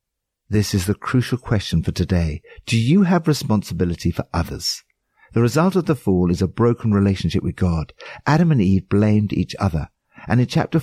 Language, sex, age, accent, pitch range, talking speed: English, male, 60-79, British, 85-125 Hz, 185 wpm